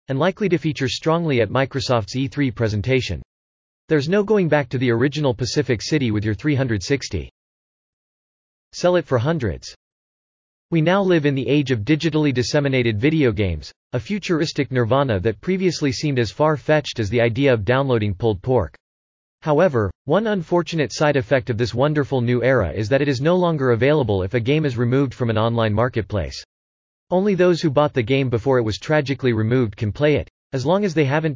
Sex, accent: male, American